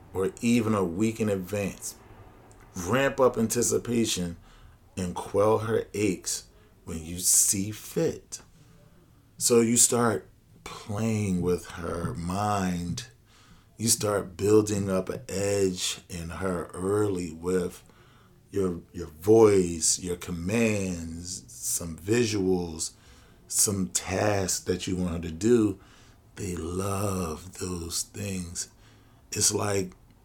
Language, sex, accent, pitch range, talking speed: English, male, American, 95-115 Hz, 110 wpm